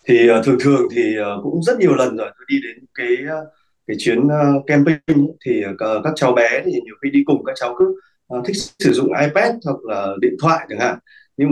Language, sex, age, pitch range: Vietnamese, male, 20-39, 130-165 Hz